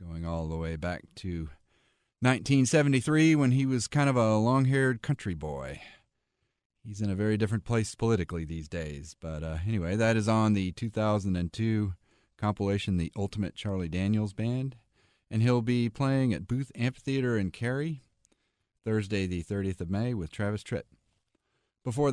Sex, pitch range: male, 95-120 Hz